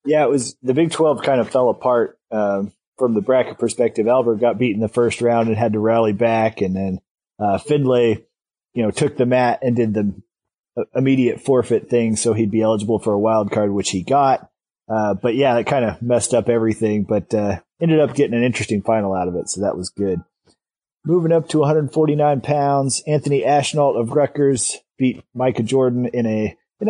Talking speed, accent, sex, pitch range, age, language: 205 wpm, American, male, 115-140 Hz, 30-49, English